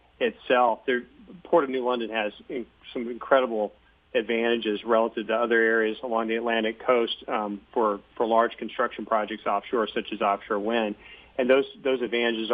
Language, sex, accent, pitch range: English, male, American, 110-125 Hz